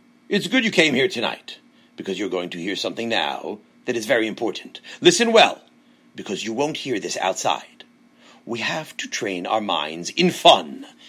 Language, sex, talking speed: English, male, 180 wpm